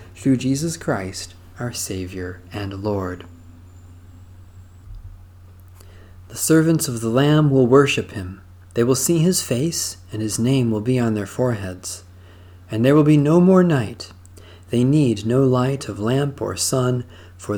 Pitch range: 90-130 Hz